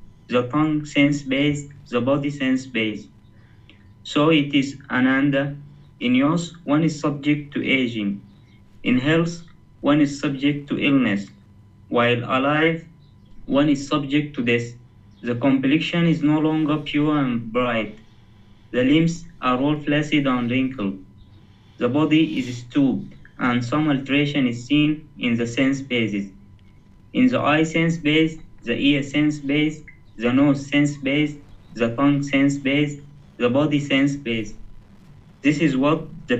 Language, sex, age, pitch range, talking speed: English, male, 30-49, 115-145 Hz, 135 wpm